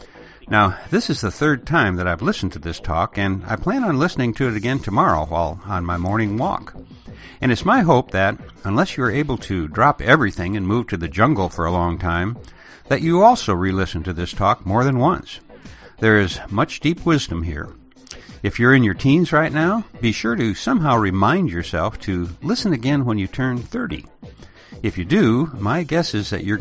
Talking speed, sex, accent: 205 wpm, male, American